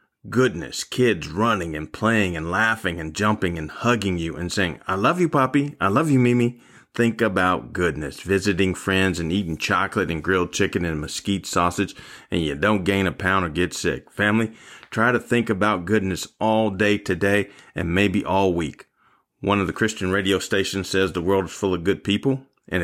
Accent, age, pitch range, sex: American, 40-59, 90-110 Hz, male